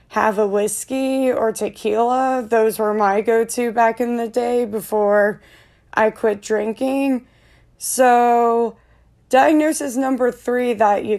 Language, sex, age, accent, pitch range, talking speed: English, female, 20-39, American, 215-255 Hz, 125 wpm